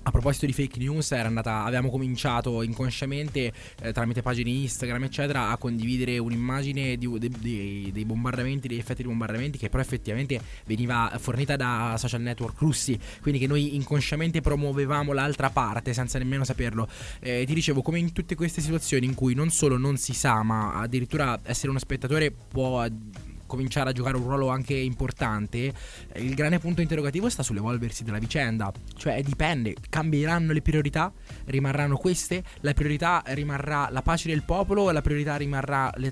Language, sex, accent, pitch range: Italian, male, native, 120-145 Hz